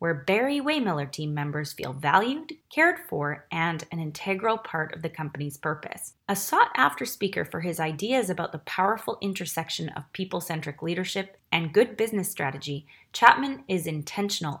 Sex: female